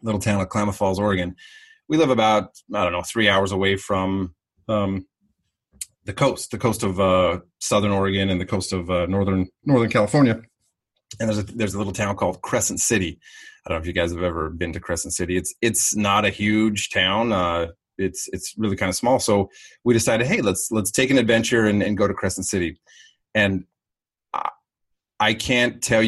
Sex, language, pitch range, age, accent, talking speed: male, English, 95-115 Hz, 30-49, American, 200 wpm